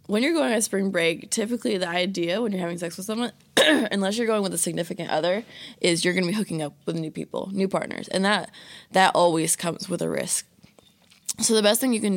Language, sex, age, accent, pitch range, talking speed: English, female, 20-39, American, 160-200 Hz, 240 wpm